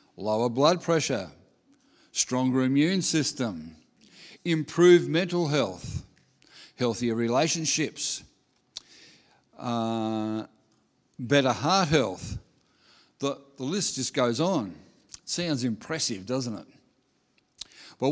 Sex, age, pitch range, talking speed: male, 50-69, 125-150 Hz, 85 wpm